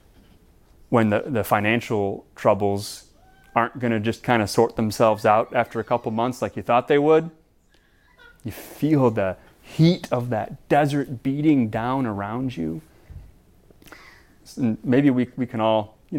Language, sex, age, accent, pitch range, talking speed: English, male, 30-49, American, 105-130 Hz, 150 wpm